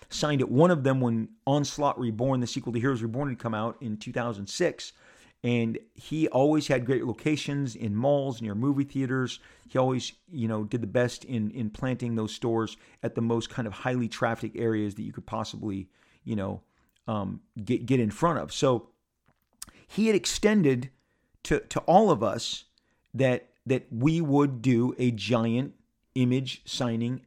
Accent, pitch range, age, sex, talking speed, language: American, 115-155 Hz, 40-59, male, 175 wpm, English